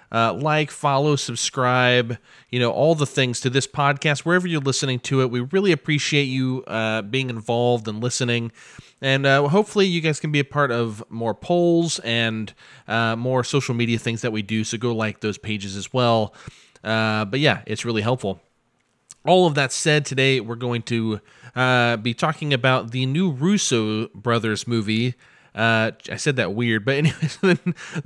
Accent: American